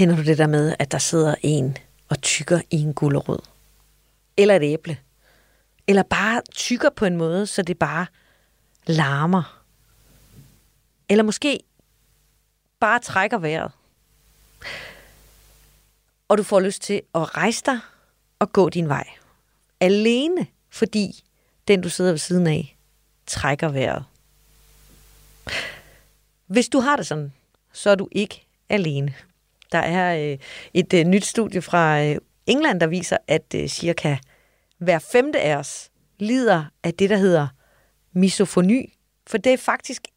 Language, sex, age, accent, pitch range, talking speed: Danish, female, 40-59, native, 155-215 Hz, 135 wpm